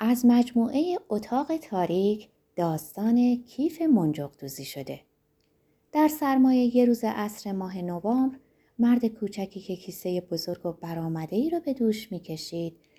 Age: 30-49